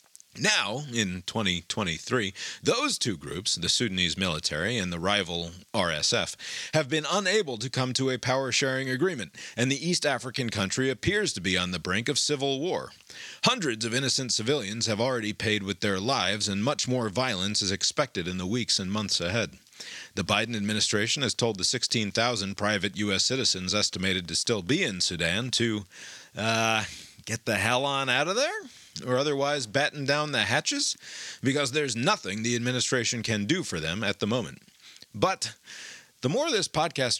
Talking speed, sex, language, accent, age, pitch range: 170 wpm, male, English, American, 40-59, 95-130 Hz